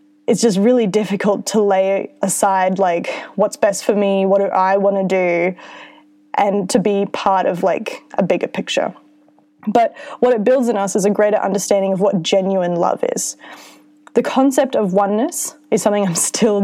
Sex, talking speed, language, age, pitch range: female, 180 wpm, English, 20-39, 190-245 Hz